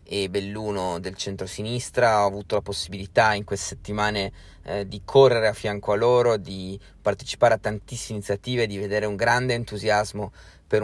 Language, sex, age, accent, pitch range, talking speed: Italian, male, 30-49, native, 100-120 Hz, 160 wpm